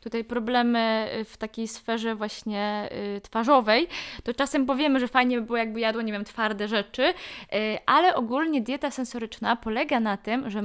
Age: 20-39